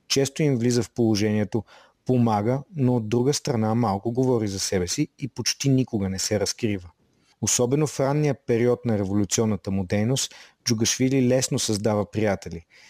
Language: Bulgarian